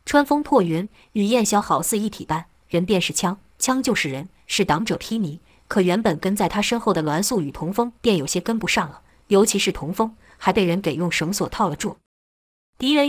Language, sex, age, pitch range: Chinese, female, 20-39, 175-235 Hz